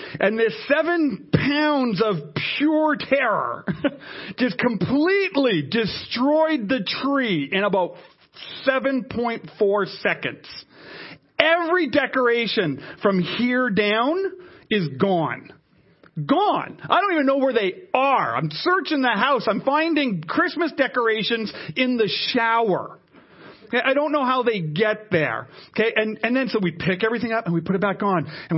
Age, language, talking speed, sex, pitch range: 40-59, English, 135 wpm, male, 170-270 Hz